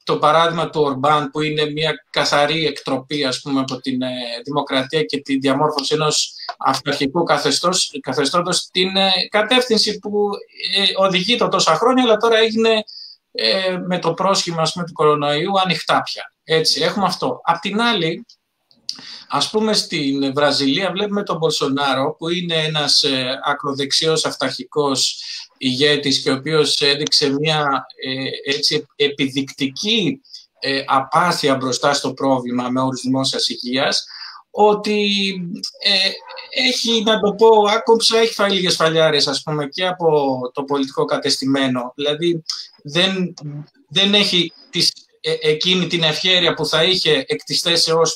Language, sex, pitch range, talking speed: Greek, male, 140-195 Hz, 135 wpm